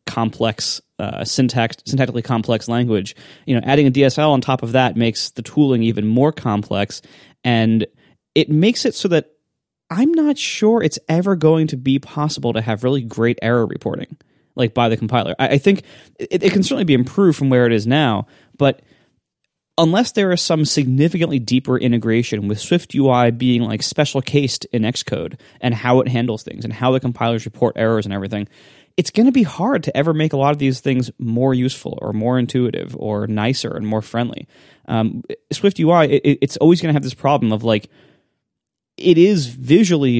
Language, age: English, 20-39